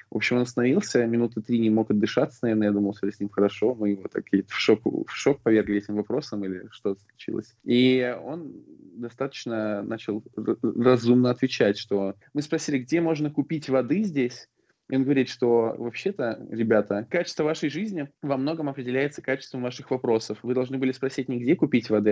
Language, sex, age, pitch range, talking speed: Russian, male, 20-39, 110-130 Hz, 180 wpm